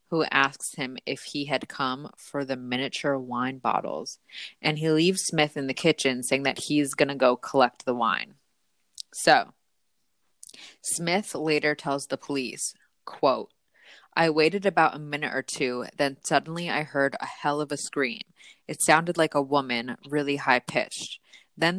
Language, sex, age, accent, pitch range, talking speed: English, female, 20-39, American, 135-160 Hz, 160 wpm